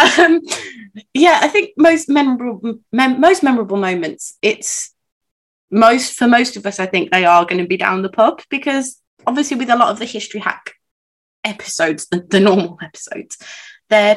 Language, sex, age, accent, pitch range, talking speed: English, female, 20-39, British, 180-235 Hz, 175 wpm